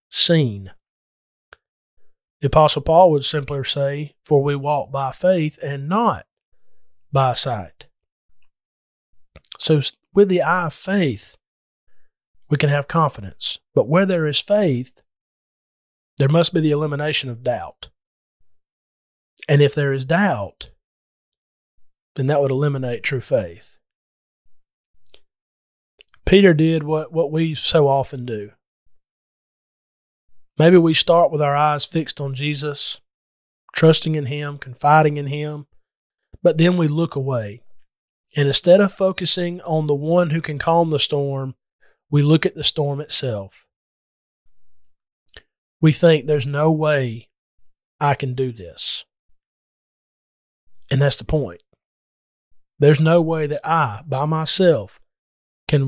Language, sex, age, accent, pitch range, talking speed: English, male, 40-59, American, 100-155 Hz, 125 wpm